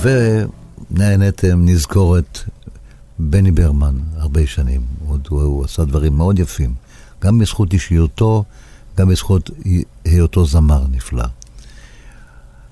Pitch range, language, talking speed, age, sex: 80-100 Hz, Hebrew, 95 wpm, 60-79, male